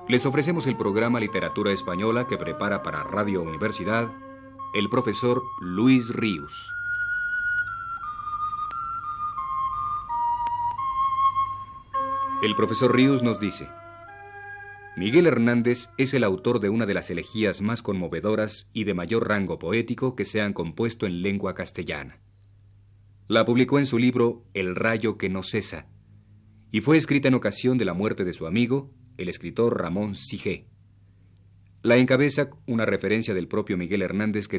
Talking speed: 135 wpm